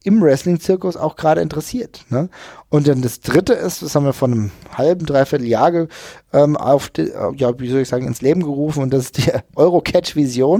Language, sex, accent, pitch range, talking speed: German, male, German, 120-150 Hz, 190 wpm